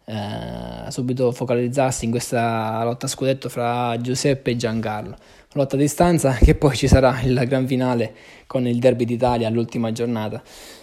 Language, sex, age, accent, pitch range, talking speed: Italian, male, 20-39, native, 120-135 Hz, 155 wpm